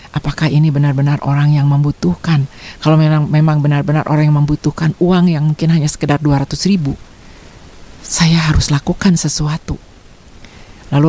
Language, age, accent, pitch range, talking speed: Indonesian, 40-59, native, 140-175 Hz, 125 wpm